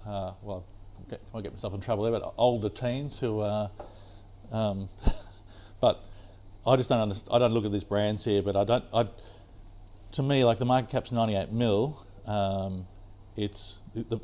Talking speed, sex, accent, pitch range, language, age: 175 wpm, male, Australian, 100-110 Hz, English, 50-69